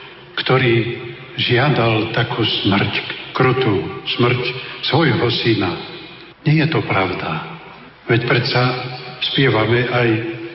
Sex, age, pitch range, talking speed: male, 50-69, 125-165 Hz, 90 wpm